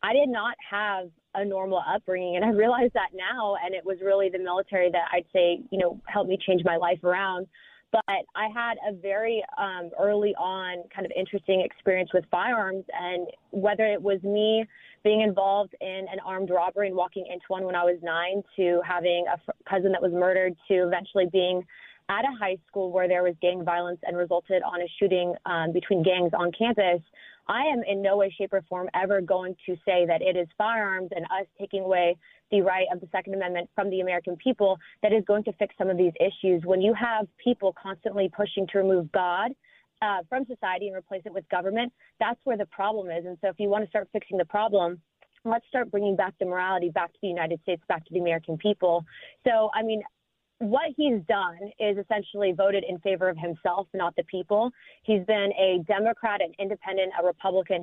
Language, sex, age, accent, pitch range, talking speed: English, female, 20-39, American, 180-210 Hz, 210 wpm